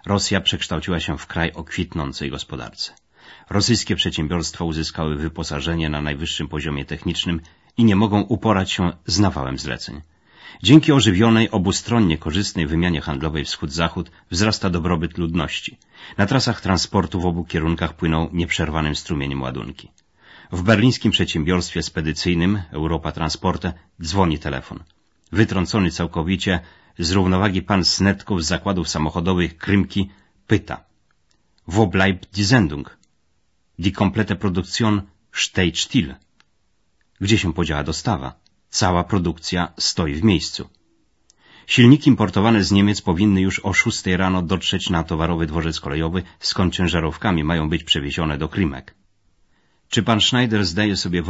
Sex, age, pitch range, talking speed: male, 30-49, 80-100 Hz, 125 wpm